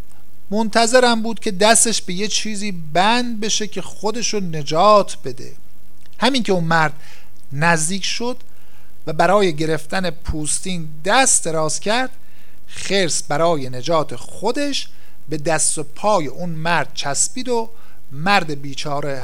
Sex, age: male, 50-69